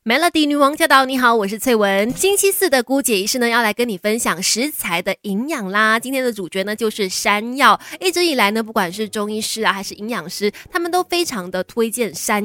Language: Chinese